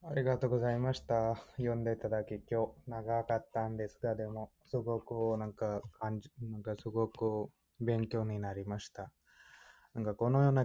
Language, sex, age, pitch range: Japanese, male, 20-39, 110-125 Hz